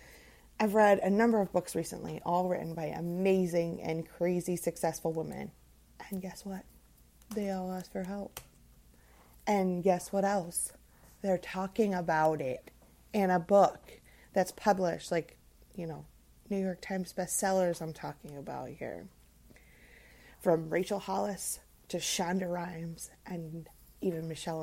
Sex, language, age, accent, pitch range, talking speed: female, English, 30-49, American, 165-210 Hz, 135 wpm